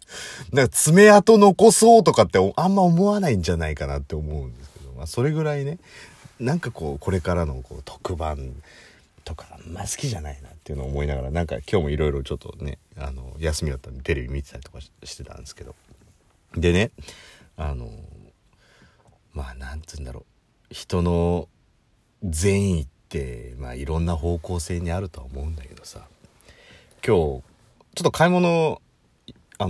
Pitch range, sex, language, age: 75-100 Hz, male, Japanese, 40-59